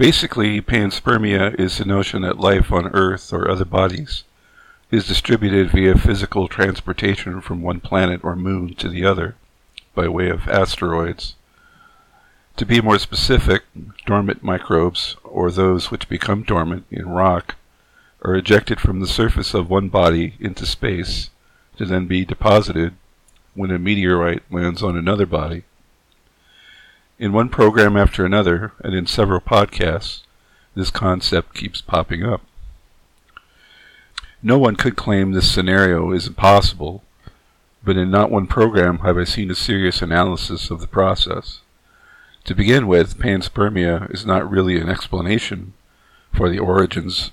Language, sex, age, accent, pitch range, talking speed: English, male, 50-69, American, 90-100 Hz, 140 wpm